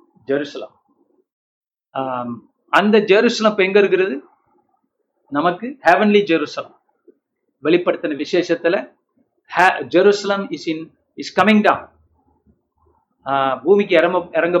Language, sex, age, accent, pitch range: Tamil, male, 50-69, native, 165-220 Hz